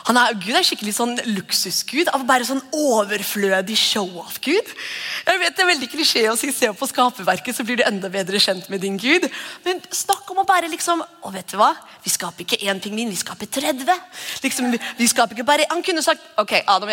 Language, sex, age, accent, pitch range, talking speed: English, female, 30-49, Swedish, 210-295 Hz, 240 wpm